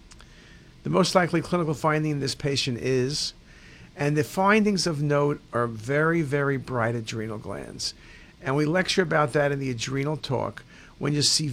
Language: English